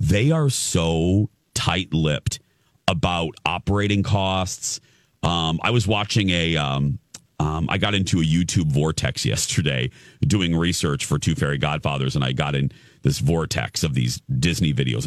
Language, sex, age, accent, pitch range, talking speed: English, male, 40-59, American, 95-140 Hz, 145 wpm